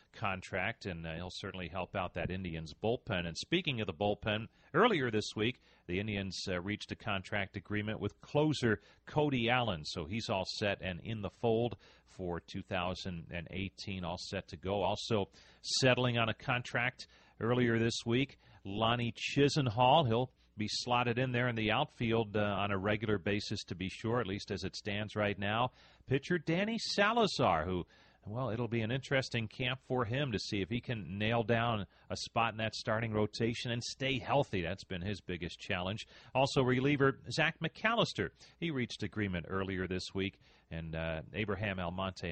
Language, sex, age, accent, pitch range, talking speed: English, male, 40-59, American, 95-125 Hz, 175 wpm